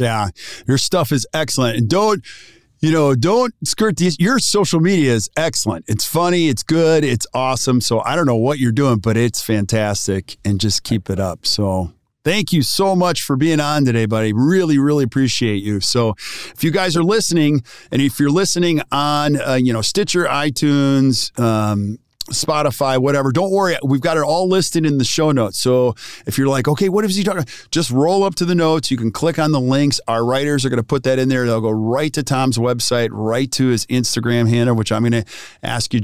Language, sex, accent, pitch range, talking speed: English, male, American, 115-170 Hz, 215 wpm